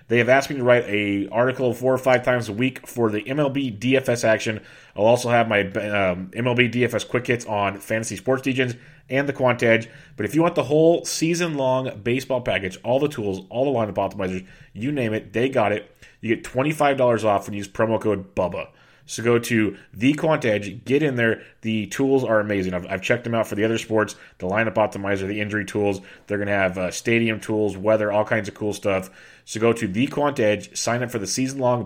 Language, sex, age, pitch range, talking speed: English, male, 30-49, 105-130 Hz, 220 wpm